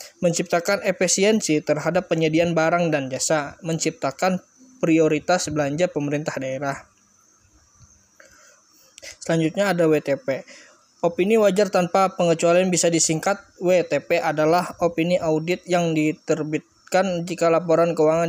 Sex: male